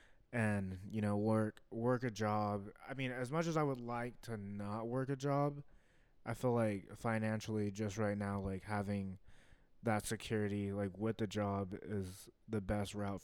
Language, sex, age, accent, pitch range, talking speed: English, male, 20-39, American, 105-120 Hz, 175 wpm